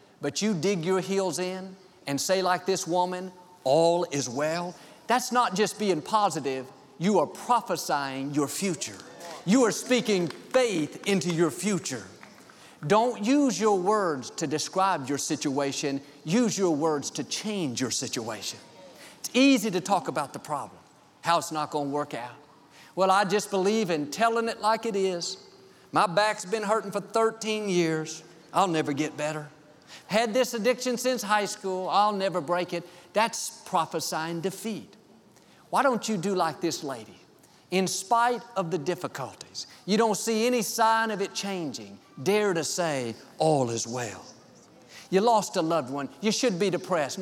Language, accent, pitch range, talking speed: English, American, 155-210 Hz, 165 wpm